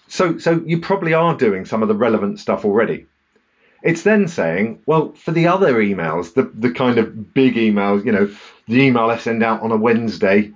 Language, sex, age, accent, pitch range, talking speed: English, male, 40-59, British, 110-150 Hz, 205 wpm